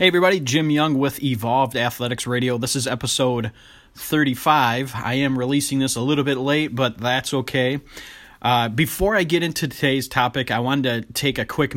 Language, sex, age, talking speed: English, male, 30-49, 185 wpm